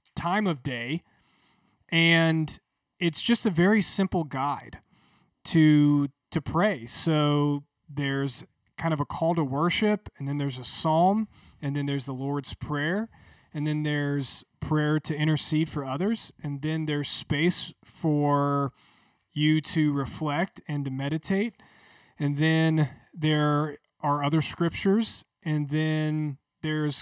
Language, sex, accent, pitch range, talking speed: English, male, American, 140-165 Hz, 135 wpm